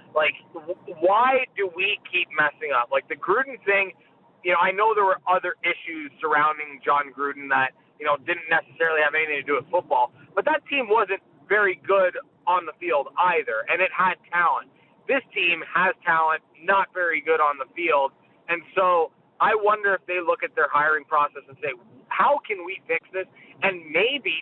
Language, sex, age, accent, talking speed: English, male, 30-49, American, 190 wpm